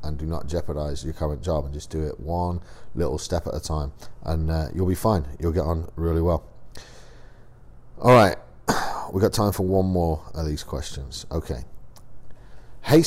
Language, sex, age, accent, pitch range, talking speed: English, male, 40-59, British, 80-105 Hz, 185 wpm